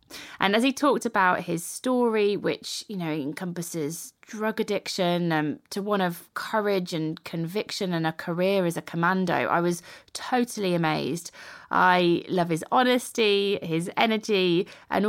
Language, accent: English, British